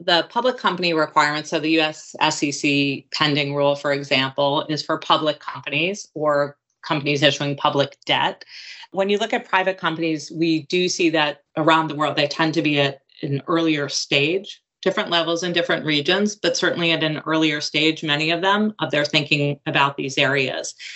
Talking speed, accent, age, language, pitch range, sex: 180 wpm, American, 30-49, English, 145-180 Hz, female